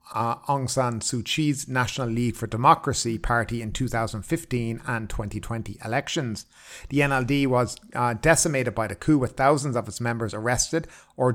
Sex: male